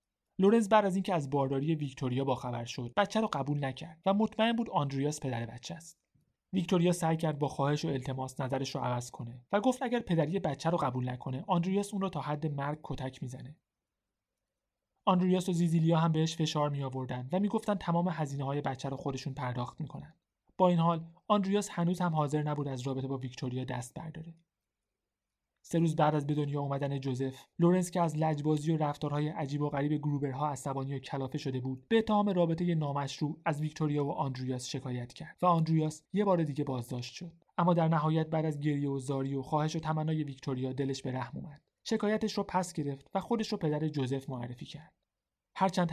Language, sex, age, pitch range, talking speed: Persian, male, 30-49, 135-170 Hz, 195 wpm